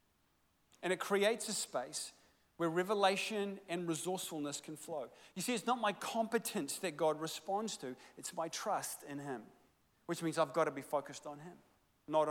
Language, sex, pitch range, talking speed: English, male, 155-205 Hz, 170 wpm